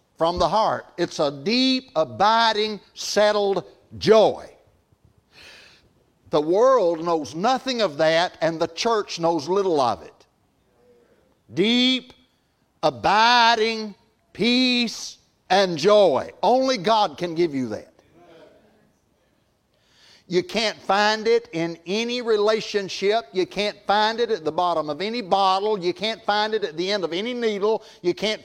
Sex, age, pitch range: male, 60-79, 165-215 Hz